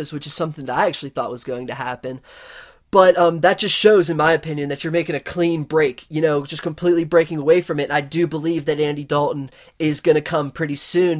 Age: 20-39